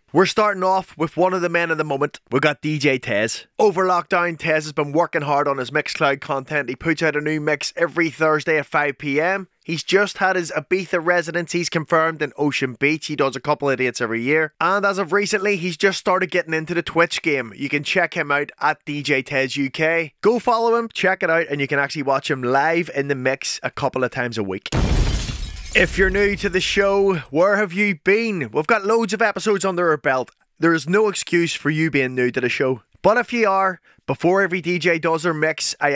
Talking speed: 230 wpm